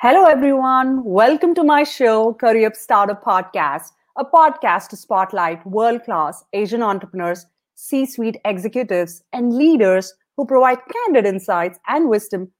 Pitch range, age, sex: 195-265 Hz, 30-49, female